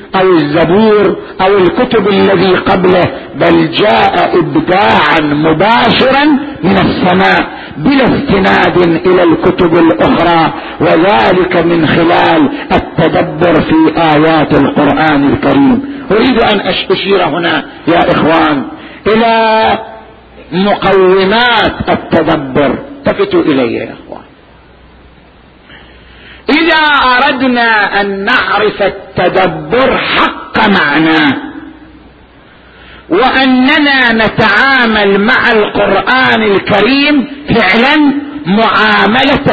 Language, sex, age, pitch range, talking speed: Arabic, male, 50-69, 185-255 Hz, 75 wpm